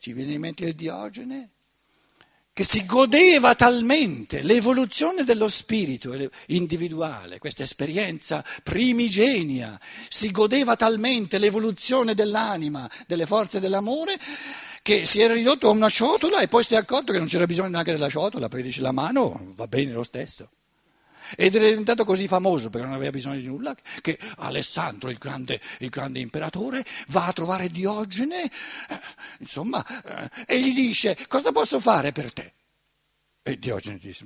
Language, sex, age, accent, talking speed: Italian, male, 60-79, native, 150 wpm